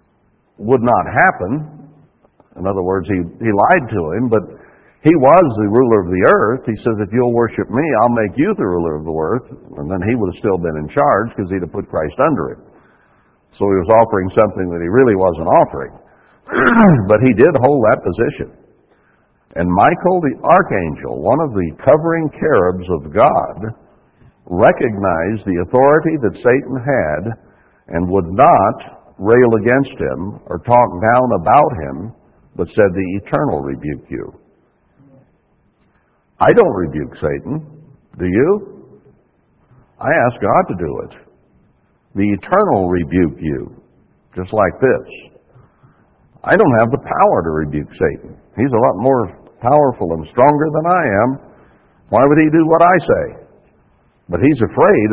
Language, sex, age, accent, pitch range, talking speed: English, male, 60-79, American, 95-135 Hz, 160 wpm